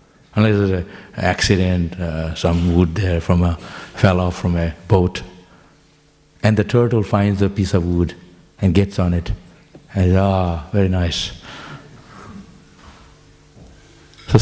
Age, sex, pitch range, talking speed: 60-79, male, 90-115 Hz, 125 wpm